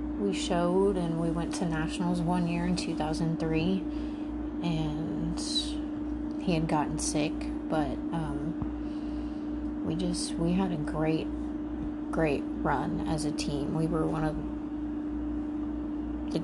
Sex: female